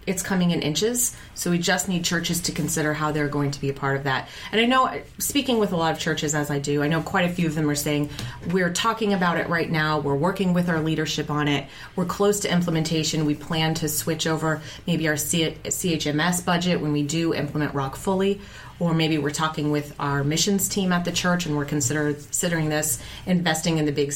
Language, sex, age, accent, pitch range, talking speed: English, female, 30-49, American, 145-175 Hz, 230 wpm